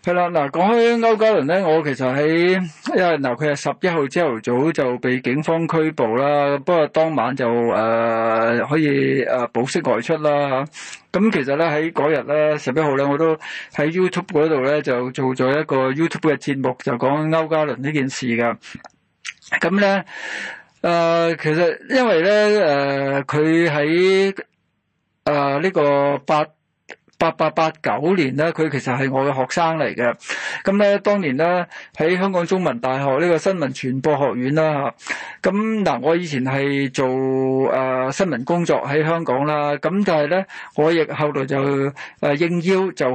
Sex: male